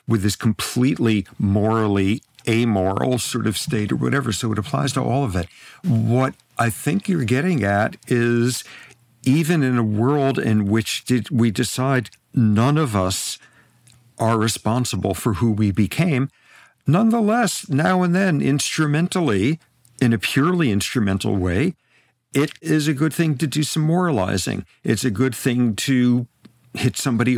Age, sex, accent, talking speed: 50-69, male, American, 145 wpm